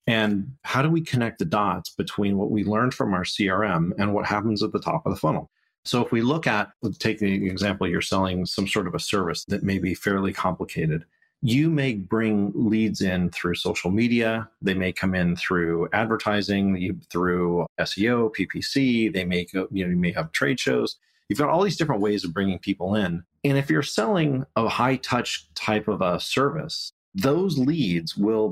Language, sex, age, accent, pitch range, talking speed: English, male, 30-49, American, 95-115 Hz, 200 wpm